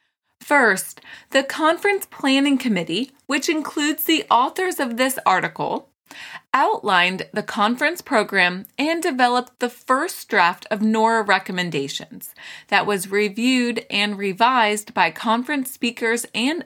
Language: English